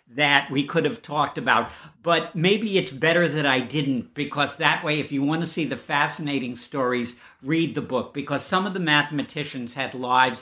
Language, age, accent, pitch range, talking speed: English, 50-69, American, 125-155 Hz, 195 wpm